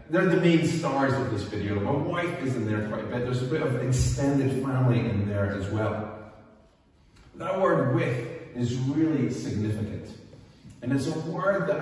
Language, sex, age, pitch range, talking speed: English, male, 30-49, 100-140 Hz, 185 wpm